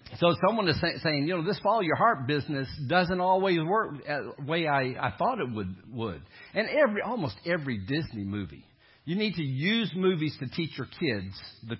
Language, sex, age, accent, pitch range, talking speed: English, male, 50-69, American, 115-145 Hz, 195 wpm